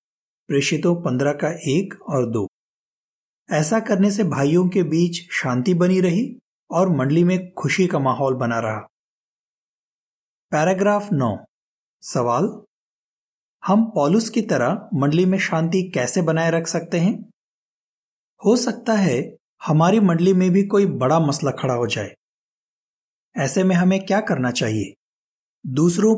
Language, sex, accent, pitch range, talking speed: Hindi, male, native, 135-190 Hz, 135 wpm